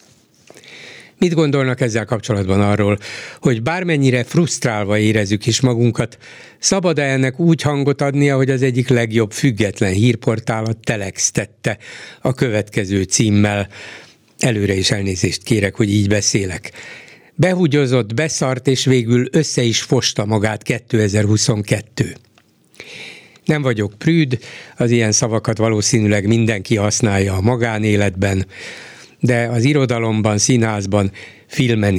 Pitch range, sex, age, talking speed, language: 105-135 Hz, male, 60-79, 115 wpm, Hungarian